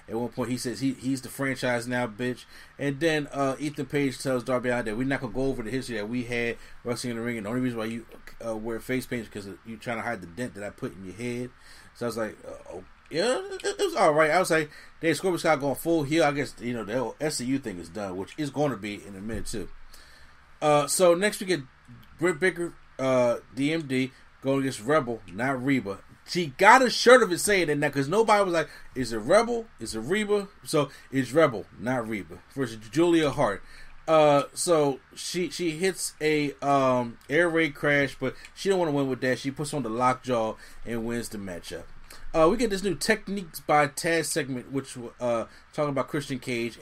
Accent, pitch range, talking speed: American, 120-155 Hz, 230 wpm